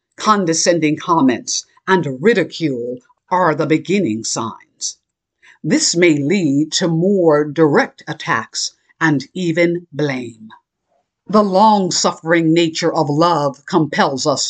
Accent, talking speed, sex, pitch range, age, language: American, 105 wpm, female, 145-195 Hz, 60-79, English